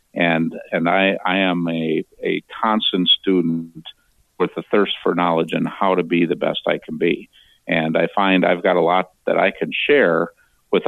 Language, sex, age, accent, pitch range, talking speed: English, male, 50-69, American, 85-95 Hz, 195 wpm